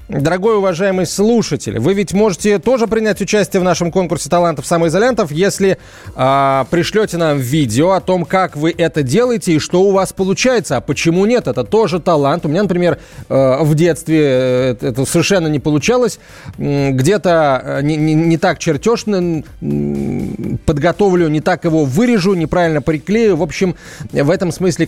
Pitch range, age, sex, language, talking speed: 145-200 Hz, 30-49, male, Russian, 150 wpm